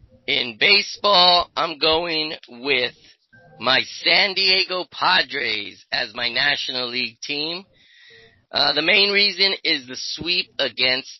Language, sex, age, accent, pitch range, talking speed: English, male, 30-49, American, 125-160 Hz, 120 wpm